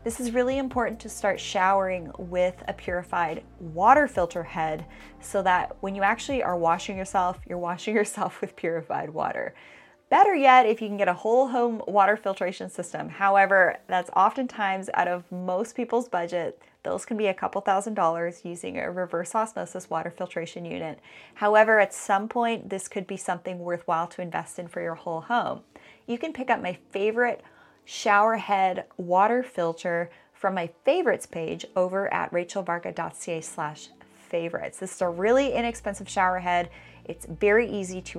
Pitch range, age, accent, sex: 175-220 Hz, 20-39, American, female